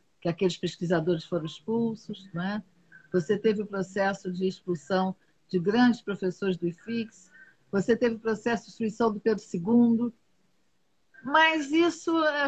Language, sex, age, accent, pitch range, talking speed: Portuguese, female, 50-69, Brazilian, 210-260 Hz, 140 wpm